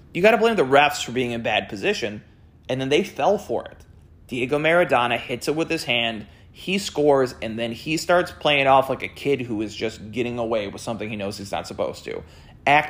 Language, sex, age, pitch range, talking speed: English, male, 30-49, 115-145 Hz, 230 wpm